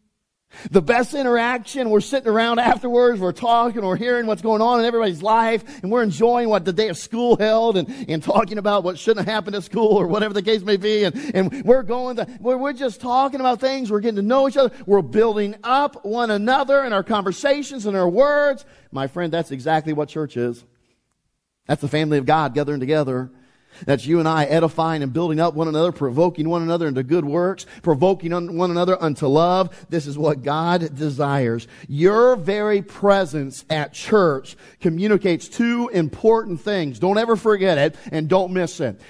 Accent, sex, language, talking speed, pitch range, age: American, male, English, 190 wpm, 155-225 Hz, 40-59